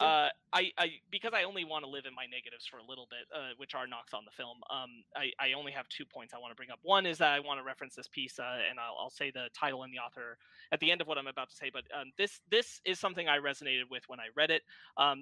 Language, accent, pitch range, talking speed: English, American, 130-155 Hz, 305 wpm